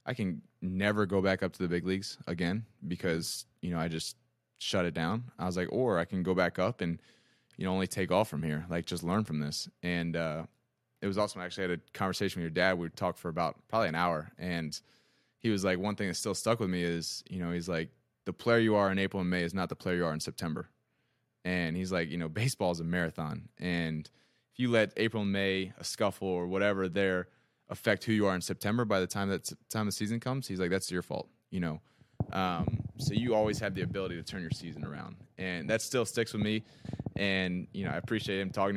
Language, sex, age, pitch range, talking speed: English, male, 20-39, 90-105 Hz, 250 wpm